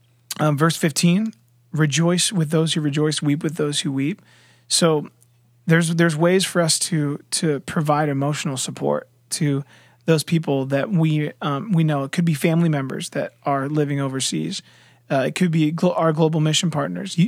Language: English